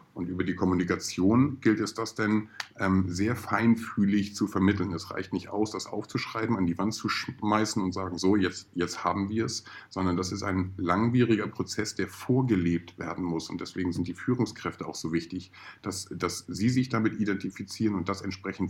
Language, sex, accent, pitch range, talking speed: German, male, German, 95-110 Hz, 190 wpm